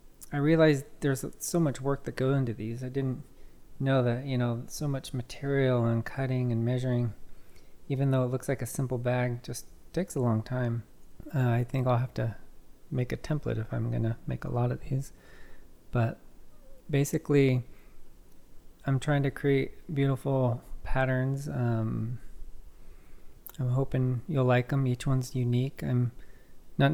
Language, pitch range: English, 120-135 Hz